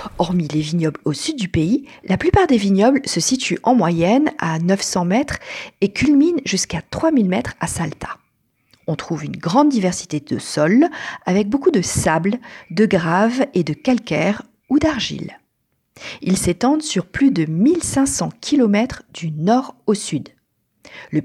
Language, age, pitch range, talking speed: French, 40-59, 170-260 Hz, 155 wpm